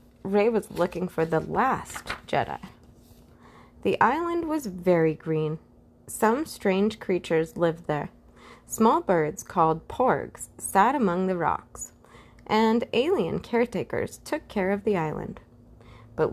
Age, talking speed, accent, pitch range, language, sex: 30-49, 125 wpm, American, 170-240 Hz, English, female